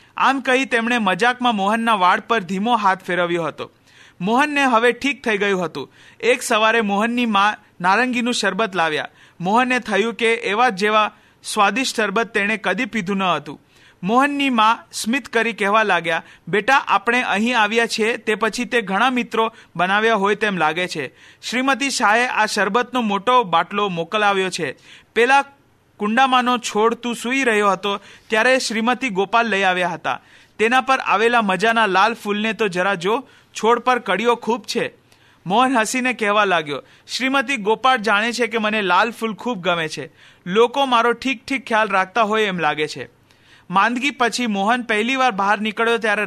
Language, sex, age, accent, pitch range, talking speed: Hindi, male, 40-59, native, 195-240 Hz, 55 wpm